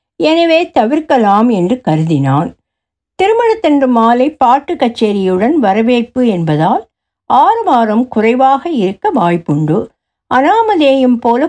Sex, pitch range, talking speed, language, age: female, 210-295 Hz, 90 wpm, Tamil, 60-79